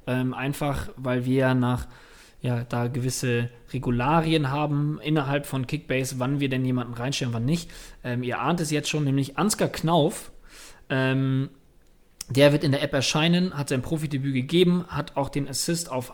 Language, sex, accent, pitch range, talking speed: German, male, German, 130-165 Hz, 165 wpm